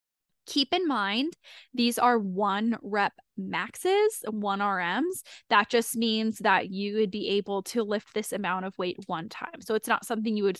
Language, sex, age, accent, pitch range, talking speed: English, female, 10-29, American, 200-260 Hz, 180 wpm